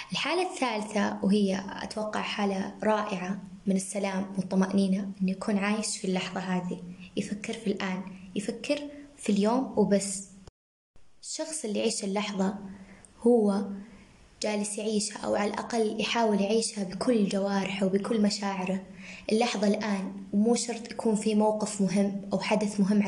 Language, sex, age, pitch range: Arabic, female, 20-39, 195-225 Hz